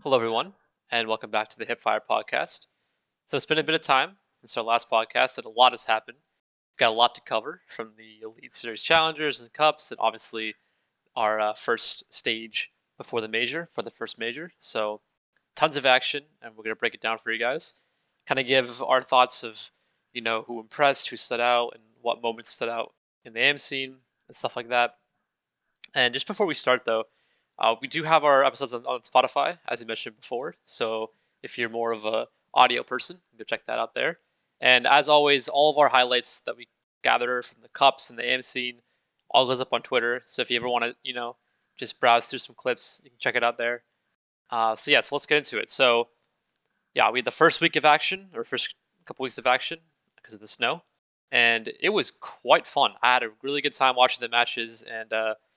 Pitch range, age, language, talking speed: 115-140 Hz, 20-39, English, 220 wpm